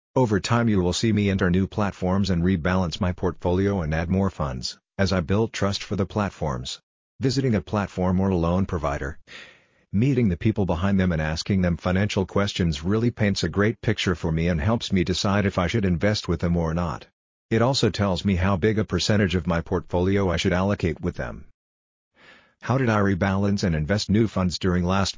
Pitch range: 90-105 Hz